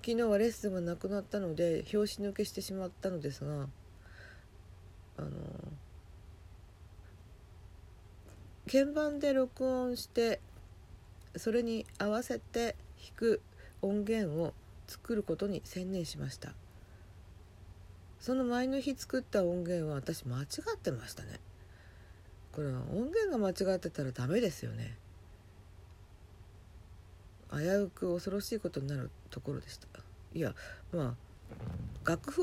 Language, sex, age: Japanese, female, 50-69